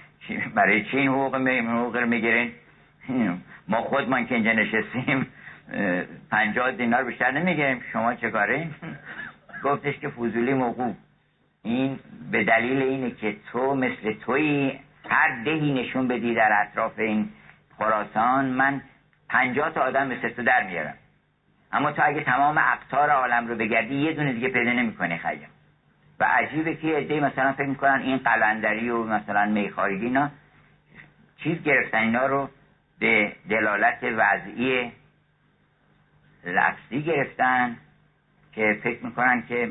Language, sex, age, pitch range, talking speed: Persian, male, 60-79, 115-140 Hz, 125 wpm